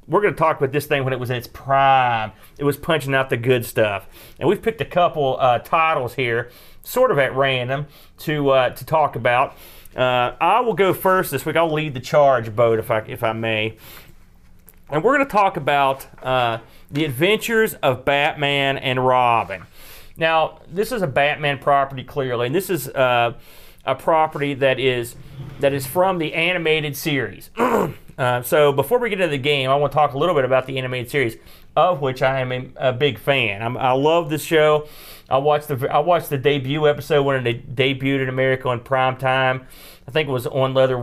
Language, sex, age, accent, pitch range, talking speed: English, male, 40-59, American, 125-150 Hz, 205 wpm